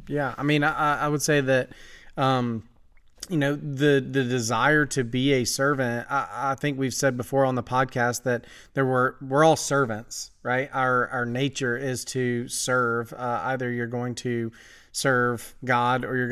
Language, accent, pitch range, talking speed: English, American, 120-135 Hz, 180 wpm